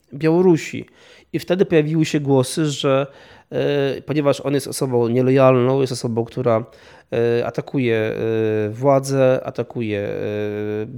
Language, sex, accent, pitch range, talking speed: Polish, male, native, 120-150 Hz, 120 wpm